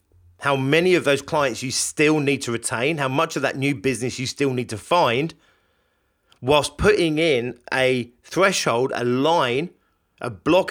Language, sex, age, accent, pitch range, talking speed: English, male, 40-59, British, 95-145 Hz, 170 wpm